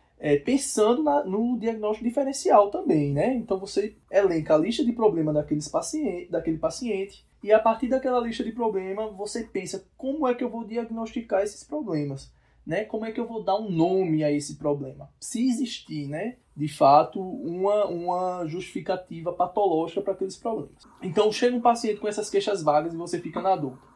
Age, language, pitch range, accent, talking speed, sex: 20-39, Portuguese, 155-220 Hz, Brazilian, 175 wpm, male